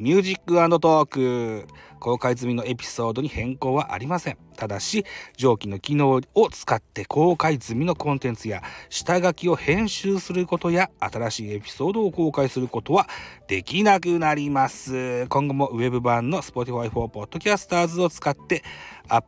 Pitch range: 115-170 Hz